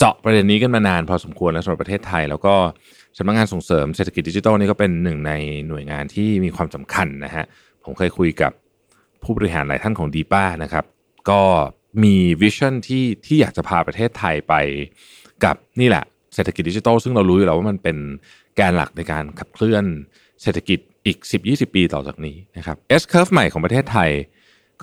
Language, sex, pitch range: Thai, male, 80-115 Hz